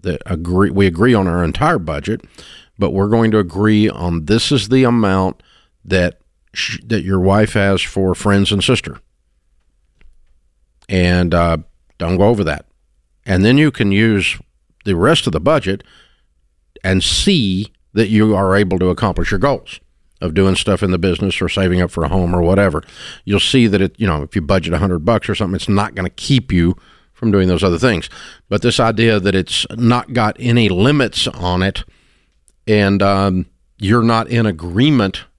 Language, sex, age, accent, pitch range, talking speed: English, male, 50-69, American, 90-110 Hz, 185 wpm